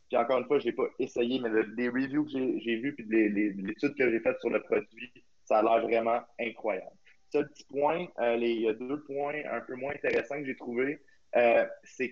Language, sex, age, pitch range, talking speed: French, male, 20-39, 110-130 Hz, 235 wpm